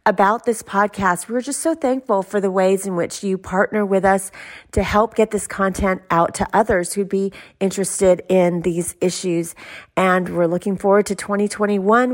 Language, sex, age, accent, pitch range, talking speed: English, female, 40-59, American, 185-220 Hz, 180 wpm